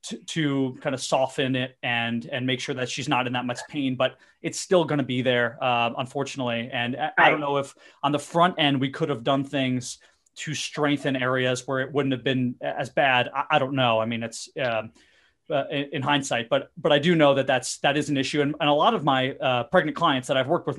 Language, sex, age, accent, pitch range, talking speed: English, male, 30-49, American, 125-145 Hz, 245 wpm